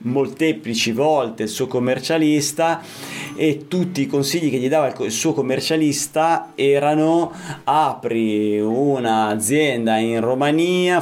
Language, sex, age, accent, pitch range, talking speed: Italian, male, 30-49, native, 115-155 Hz, 110 wpm